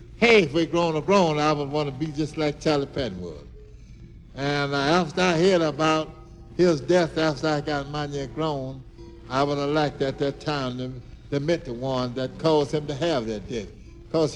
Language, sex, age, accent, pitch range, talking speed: English, male, 60-79, American, 135-170 Hz, 215 wpm